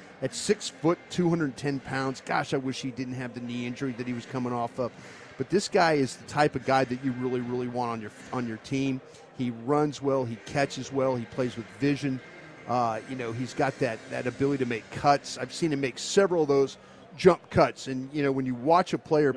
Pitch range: 125-150 Hz